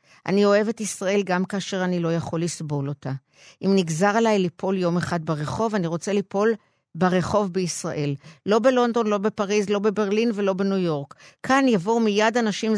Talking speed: 165 wpm